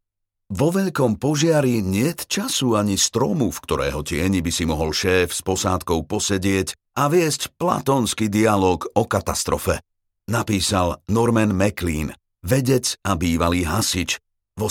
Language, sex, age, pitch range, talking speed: Slovak, male, 50-69, 90-120 Hz, 125 wpm